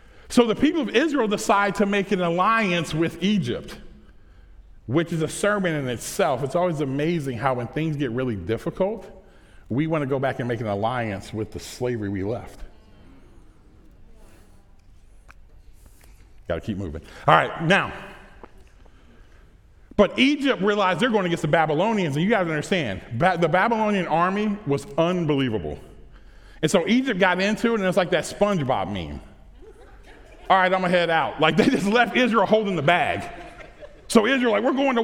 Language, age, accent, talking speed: English, 40-59, American, 170 wpm